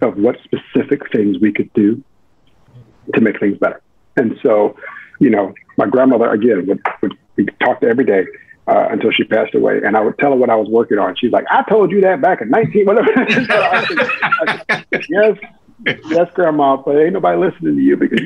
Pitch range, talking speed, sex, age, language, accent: 120-165 Hz, 195 wpm, male, 50-69, English, American